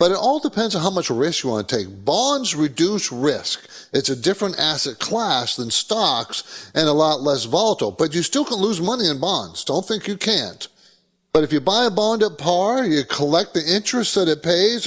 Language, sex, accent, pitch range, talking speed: English, male, American, 140-195 Hz, 220 wpm